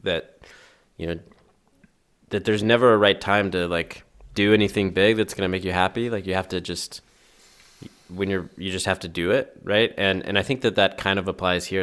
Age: 20-39